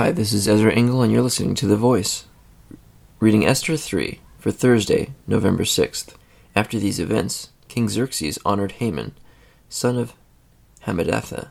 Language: English